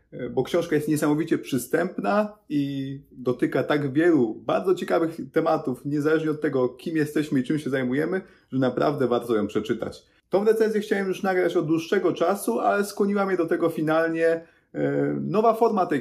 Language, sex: Polish, male